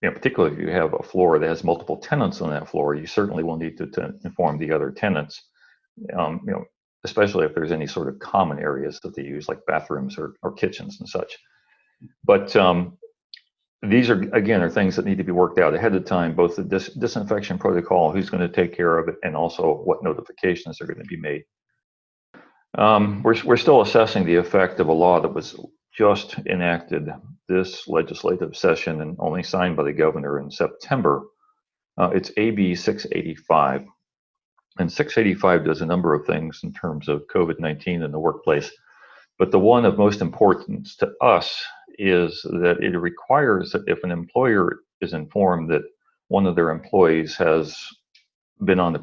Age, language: 40-59, English